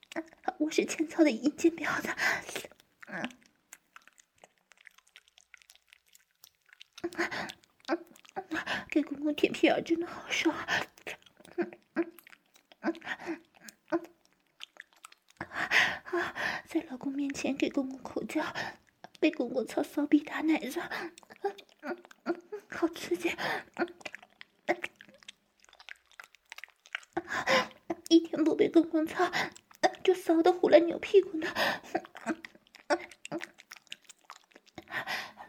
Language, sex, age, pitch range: Chinese, female, 20-39, 310-355 Hz